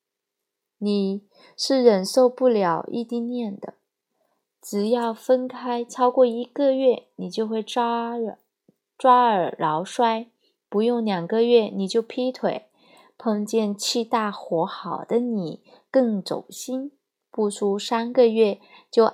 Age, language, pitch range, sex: 20-39, Chinese, 205-255 Hz, female